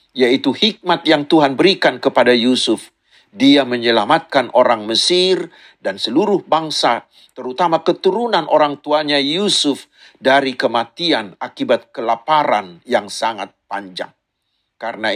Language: Indonesian